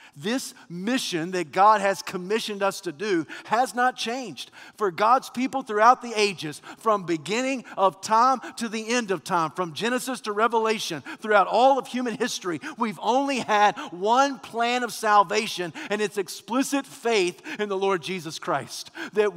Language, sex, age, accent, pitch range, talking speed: English, male, 40-59, American, 210-275 Hz, 165 wpm